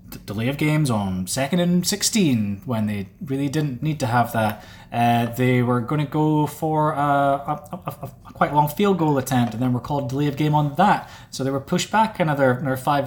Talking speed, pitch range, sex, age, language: 215 wpm, 130-195 Hz, male, 20-39, English